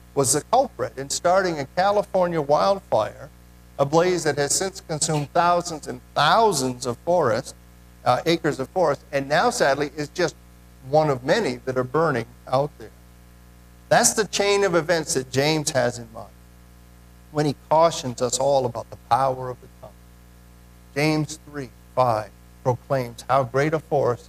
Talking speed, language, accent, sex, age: 160 wpm, English, American, male, 50-69